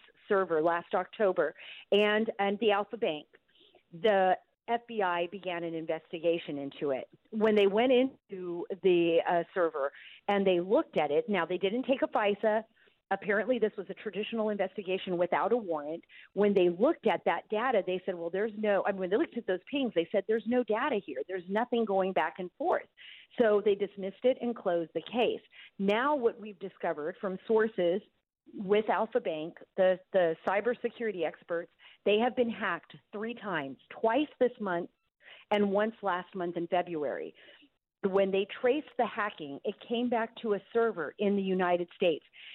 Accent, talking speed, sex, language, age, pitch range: American, 175 wpm, female, English, 40-59, 180-220 Hz